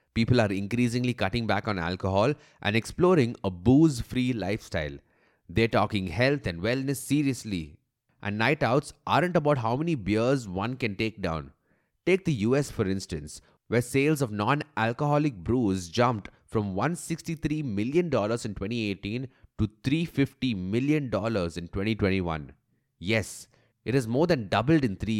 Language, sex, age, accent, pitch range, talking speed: English, male, 30-49, Indian, 100-135 Hz, 140 wpm